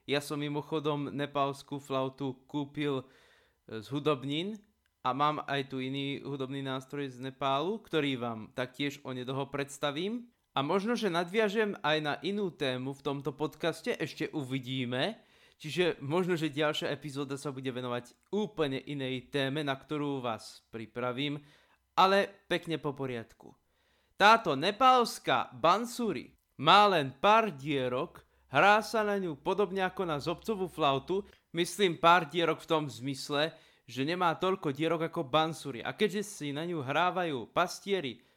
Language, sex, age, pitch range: Slovak, male, 20-39, 135-195 Hz